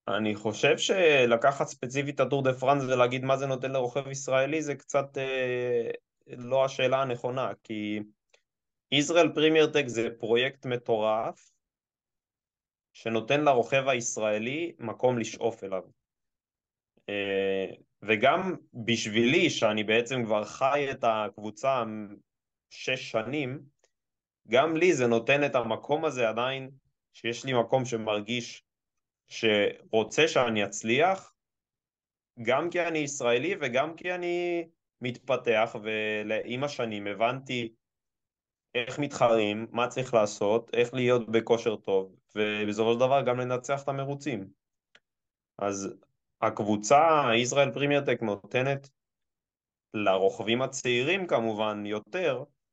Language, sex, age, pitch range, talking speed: Hebrew, male, 20-39, 110-140 Hz, 110 wpm